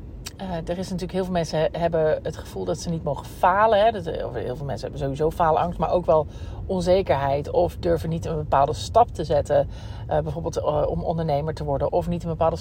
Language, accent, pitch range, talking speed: Dutch, Dutch, 150-185 Hz, 225 wpm